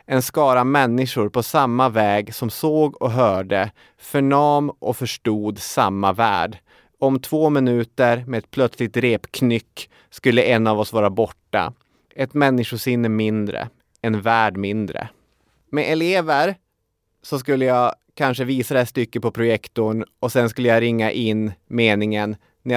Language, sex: English, male